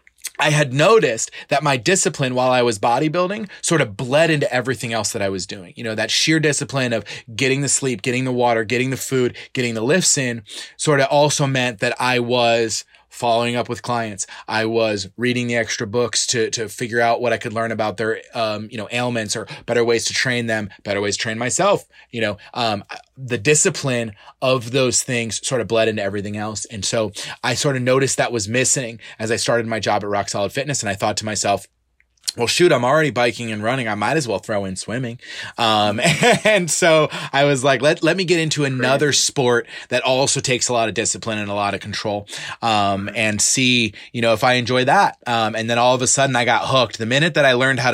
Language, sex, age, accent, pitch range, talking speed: English, male, 20-39, American, 110-135 Hz, 230 wpm